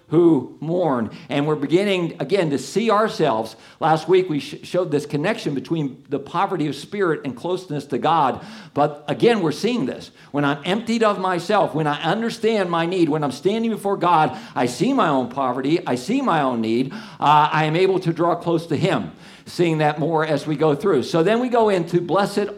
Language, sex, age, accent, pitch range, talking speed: English, male, 50-69, American, 140-185 Hz, 200 wpm